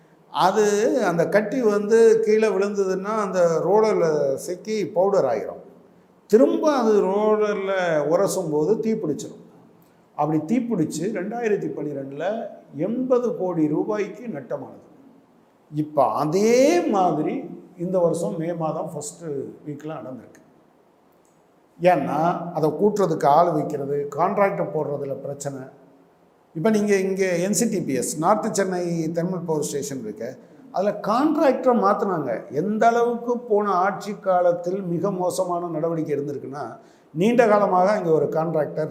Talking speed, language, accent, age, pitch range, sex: 105 wpm, Tamil, native, 50-69, 160-215 Hz, male